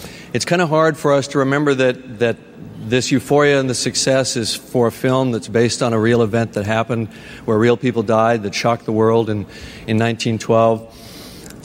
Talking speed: 195 wpm